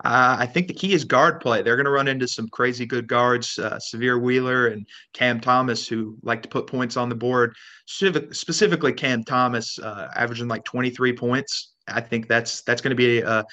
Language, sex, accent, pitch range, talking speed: English, male, American, 115-130 Hz, 215 wpm